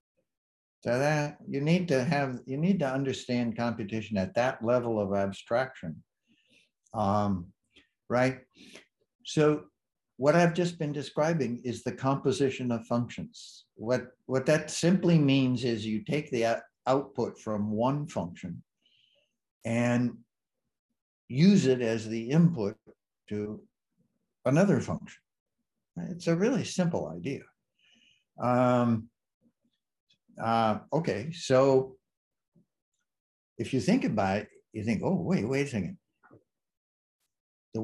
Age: 60-79